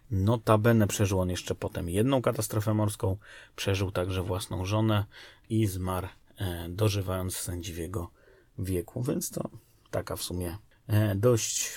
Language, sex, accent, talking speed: Polish, male, native, 120 wpm